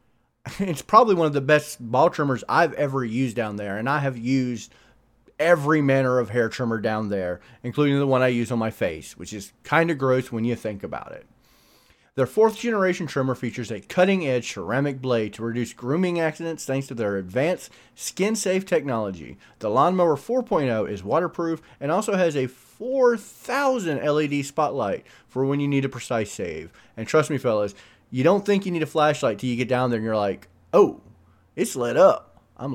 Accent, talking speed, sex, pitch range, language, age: American, 195 wpm, male, 120-165 Hz, English, 30-49